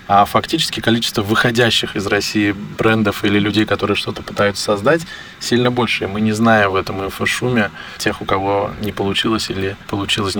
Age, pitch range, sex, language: 20-39, 100-115 Hz, male, Russian